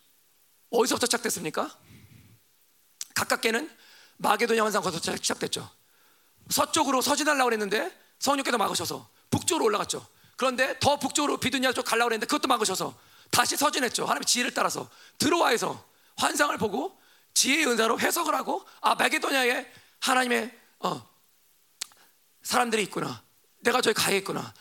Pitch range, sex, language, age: 225-295 Hz, male, Korean, 40-59